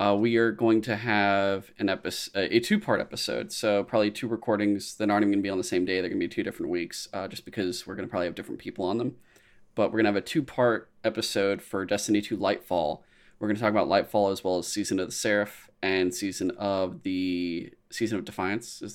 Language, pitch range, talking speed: English, 95-110 Hz, 245 wpm